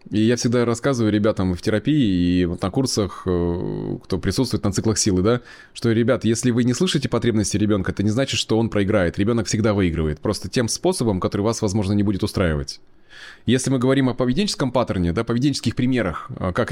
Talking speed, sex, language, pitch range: 190 wpm, male, Russian, 105-130 Hz